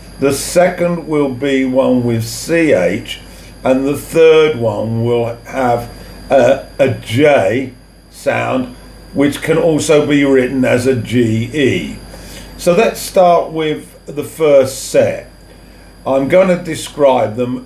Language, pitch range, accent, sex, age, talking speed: English, 85-140 Hz, British, male, 50-69, 125 wpm